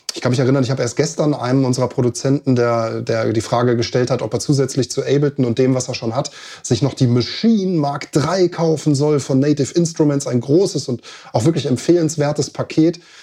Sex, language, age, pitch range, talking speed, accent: male, German, 20-39, 125-160 Hz, 210 wpm, German